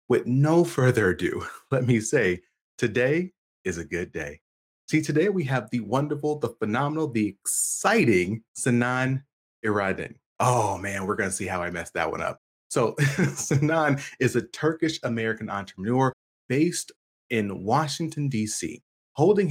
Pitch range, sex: 110-155 Hz, male